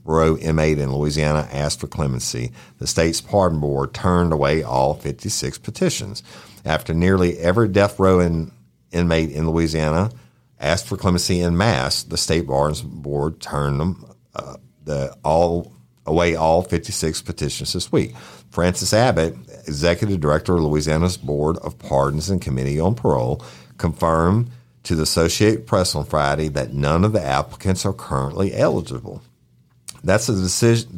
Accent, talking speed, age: American, 145 wpm, 50-69